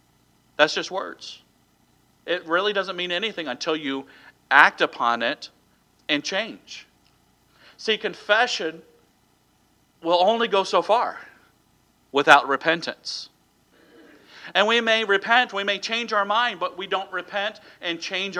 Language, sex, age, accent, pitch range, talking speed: English, male, 40-59, American, 150-205 Hz, 125 wpm